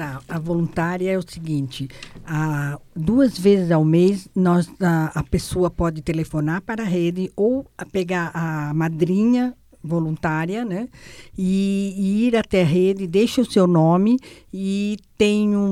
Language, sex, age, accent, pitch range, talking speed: Portuguese, female, 60-79, Brazilian, 170-195 Hz, 150 wpm